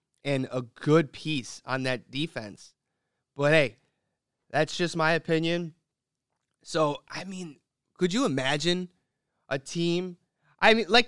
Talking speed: 130 wpm